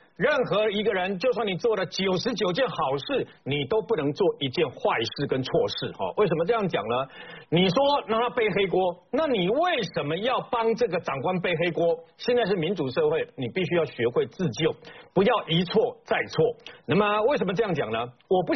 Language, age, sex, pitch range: Chinese, 50-69, male, 165-245 Hz